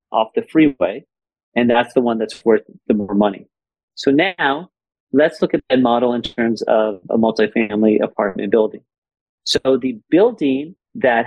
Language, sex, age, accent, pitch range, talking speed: English, male, 40-59, American, 115-140 Hz, 160 wpm